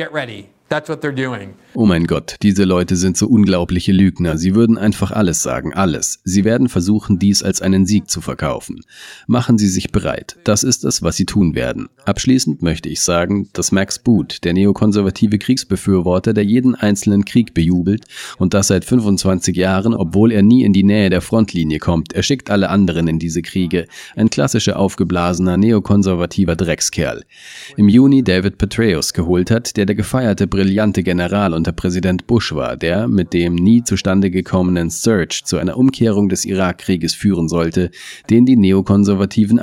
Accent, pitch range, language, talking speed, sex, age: German, 90-105 Hz, German, 165 wpm, male, 40-59